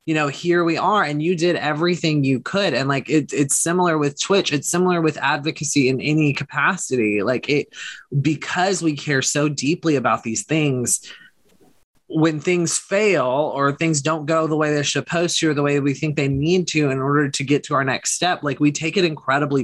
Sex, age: male, 20-39